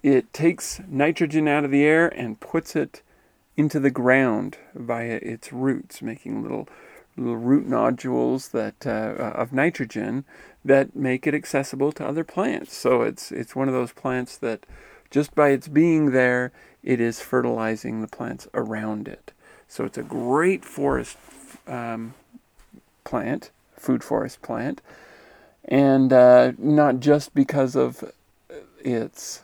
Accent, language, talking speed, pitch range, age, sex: American, English, 140 wpm, 120-155 Hz, 40-59, male